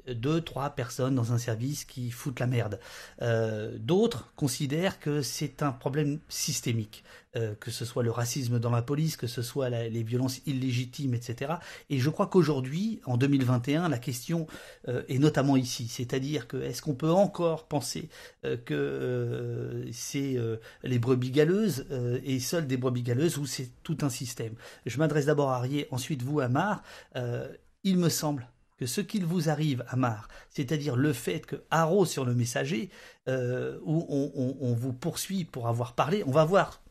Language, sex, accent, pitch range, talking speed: French, male, French, 125-155 Hz, 180 wpm